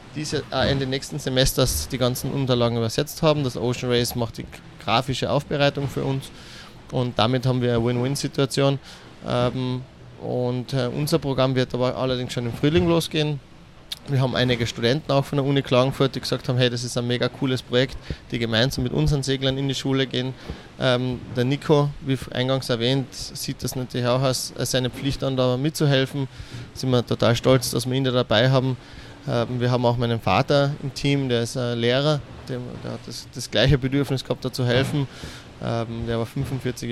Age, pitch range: 20-39, 120-135 Hz